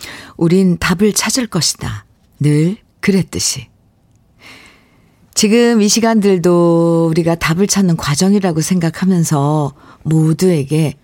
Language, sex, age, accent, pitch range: Korean, female, 50-69, native, 145-190 Hz